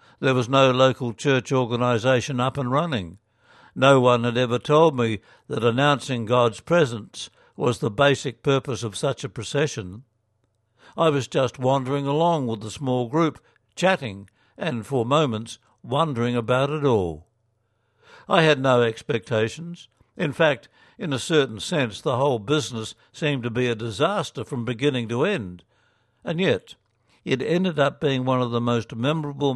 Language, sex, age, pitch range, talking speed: English, male, 60-79, 115-145 Hz, 155 wpm